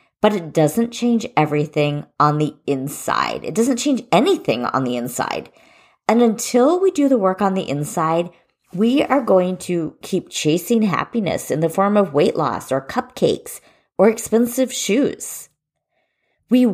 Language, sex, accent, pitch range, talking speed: English, female, American, 155-235 Hz, 155 wpm